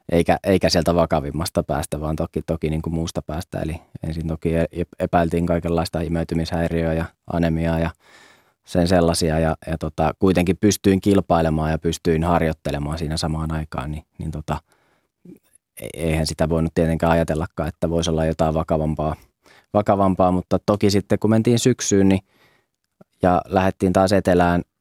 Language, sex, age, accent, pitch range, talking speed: Finnish, male, 20-39, native, 80-90 Hz, 145 wpm